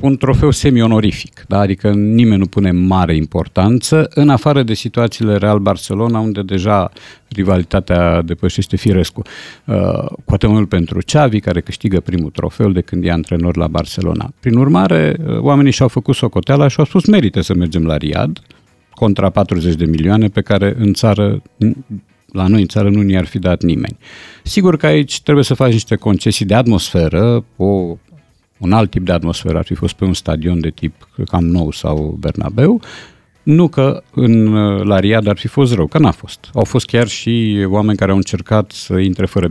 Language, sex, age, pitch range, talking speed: Romanian, male, 50-69, 90-120 Hz, 180 wpm